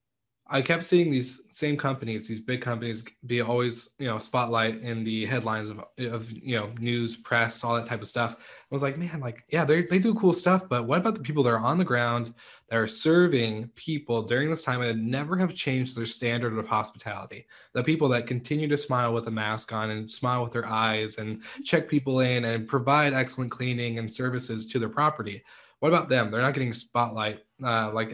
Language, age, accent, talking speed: English, 20-39, American, 215 wpm